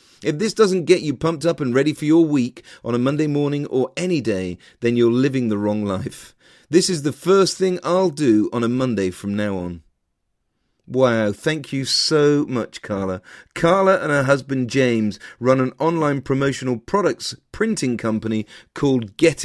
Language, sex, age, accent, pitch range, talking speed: English, male, 40-59, British, 115-160 Hz, 180 wpm